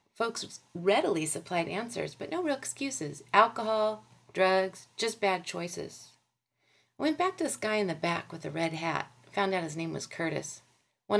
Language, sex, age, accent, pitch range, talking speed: English, female, 40-59, American, 155-215 Hz, 175 wpm